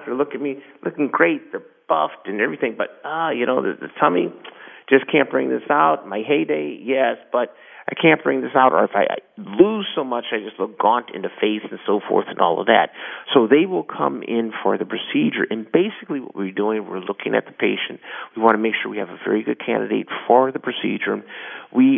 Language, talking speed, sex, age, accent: English, 230 wpm, male, 50-69, American